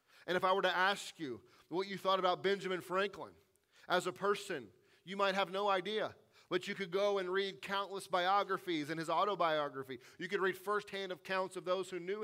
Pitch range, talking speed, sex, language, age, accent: 185-230 Hz, 200 wpm, male, English, 40-59, American